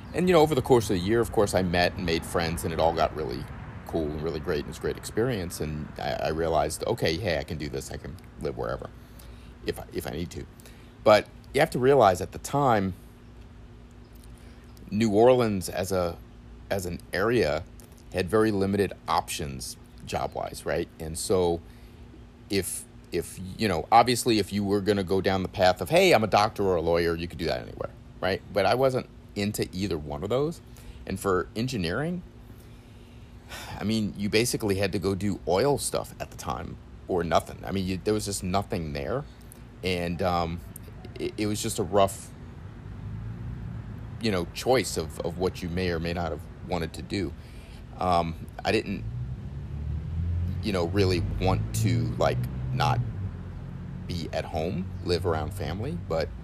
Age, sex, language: 40-59, male, English